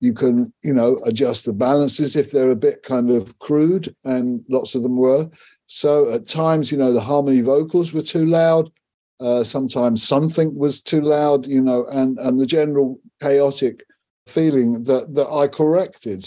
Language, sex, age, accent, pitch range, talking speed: English, male, 50-69, British, 125-155 Hz, 175 wpm